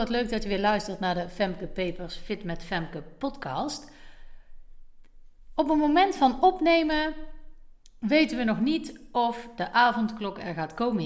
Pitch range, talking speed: 180-245 Hz, 150 wpm